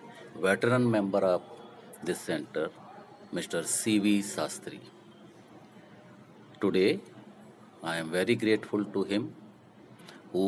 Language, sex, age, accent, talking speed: English, male, 50-69, Indian, 90 wpm